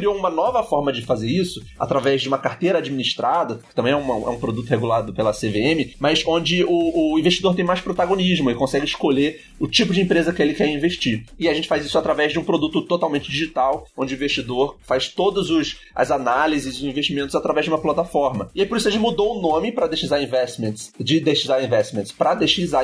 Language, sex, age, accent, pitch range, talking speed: Portuguese, male, 30-49, Brazilian, 135-180 Hz, 215 wpm